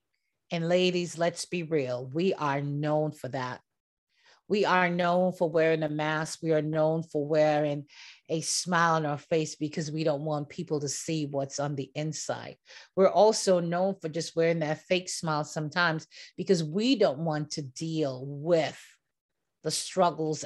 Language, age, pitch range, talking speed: English, 40-59, 155-185 Hz, 165 wpm